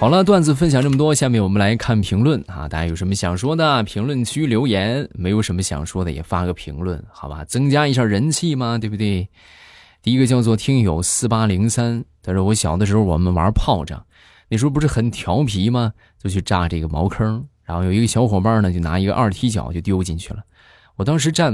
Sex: male